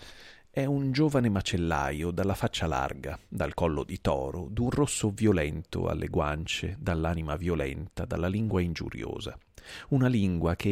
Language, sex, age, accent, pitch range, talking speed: Italian, male, 40-59, native, 80-110 Hz, 135 wpm